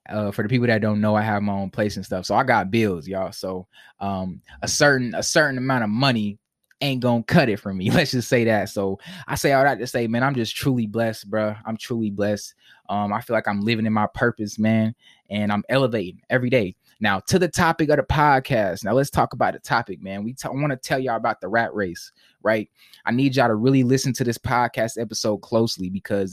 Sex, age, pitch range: male, 20-39, 105-130 Hz